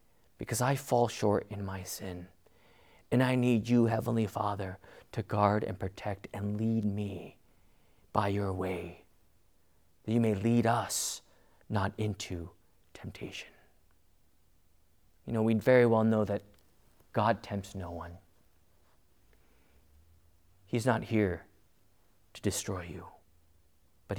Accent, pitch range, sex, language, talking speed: American, 85-120 Hz, male, English, 120 wpm